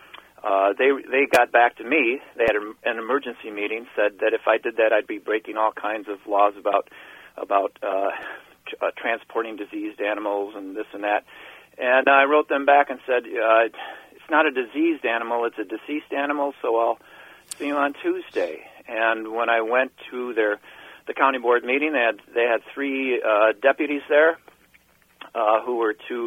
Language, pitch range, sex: English, 110-145 Hz, male